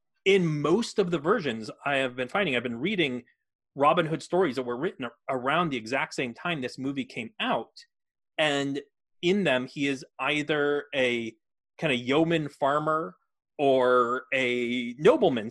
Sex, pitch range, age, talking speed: male, 125-160 Hz, 30-49, 160 wpm